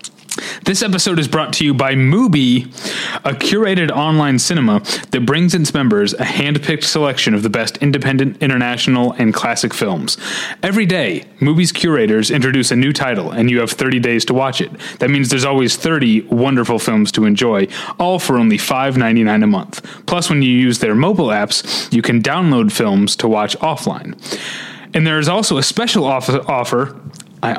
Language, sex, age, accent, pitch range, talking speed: English, male, 30-49, American, 125-175 Hz, 175 wpm